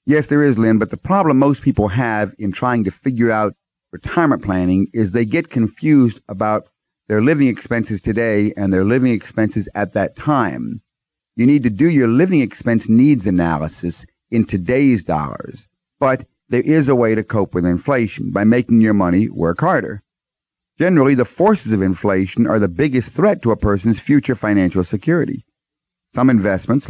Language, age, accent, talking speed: English, 50-69, American, 170 wpm